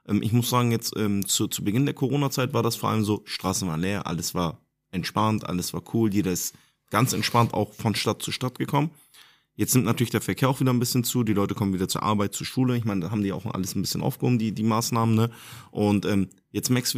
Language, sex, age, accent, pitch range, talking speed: German, male, 30-49, German, 110-135 Hz, 245 wpm